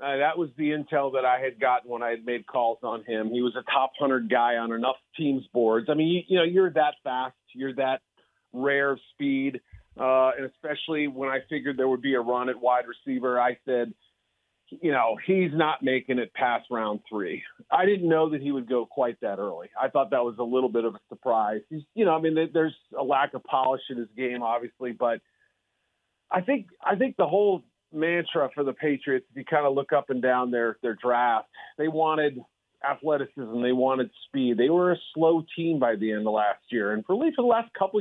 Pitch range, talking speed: 125-155 Hz, 225 wpm